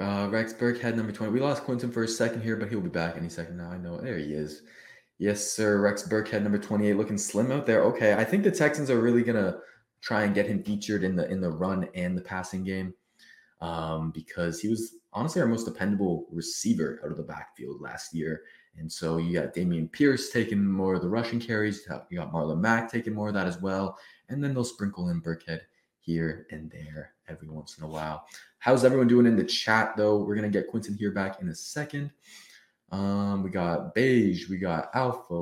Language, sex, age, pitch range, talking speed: English, male, 20-39, 85-115 Hz, 220 wpm